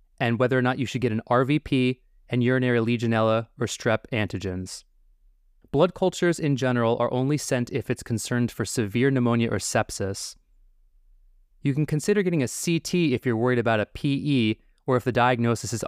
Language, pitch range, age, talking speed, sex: English, 105-135 Hz, 20-39, 180 wpm, male